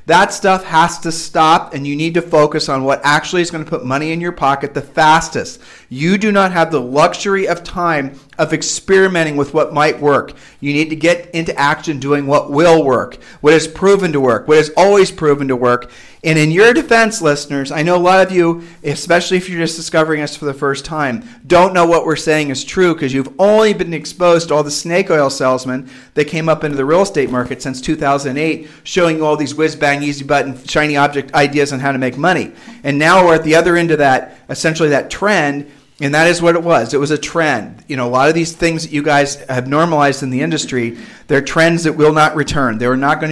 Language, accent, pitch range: English, American, 135-165 Hz